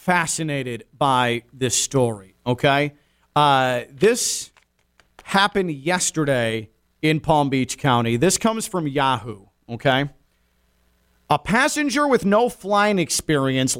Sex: male